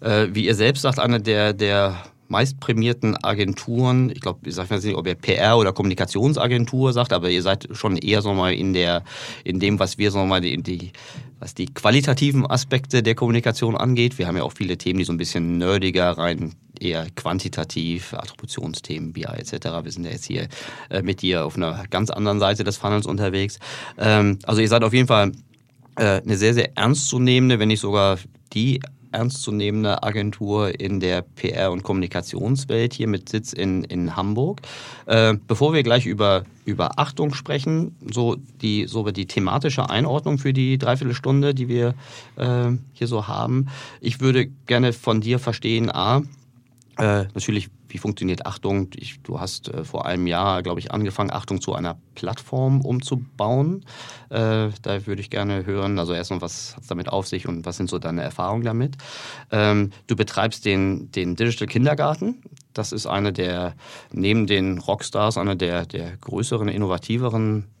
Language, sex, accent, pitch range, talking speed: German, male, German, 100-125 Hz, 170 wpm